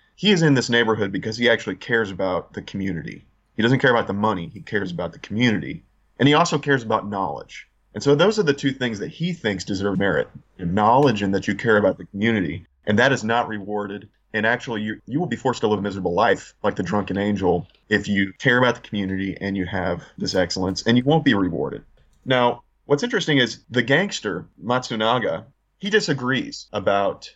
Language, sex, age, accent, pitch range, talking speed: English, male, 30-49, American, 100-125 Hz, 210 wpm